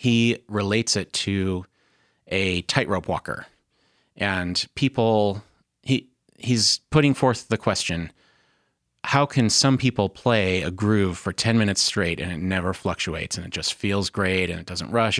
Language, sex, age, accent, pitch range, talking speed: English, male, 30-49, American, 95-115 Hz, 155 wpm